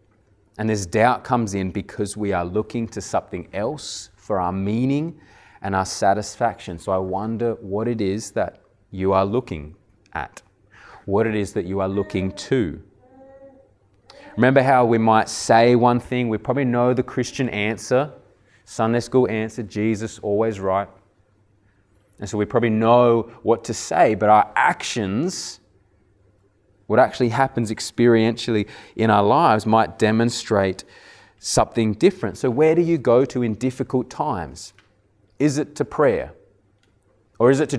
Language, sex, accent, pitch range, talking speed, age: English, male, Australian, 100-120 Hz, 150 wpm, 20-39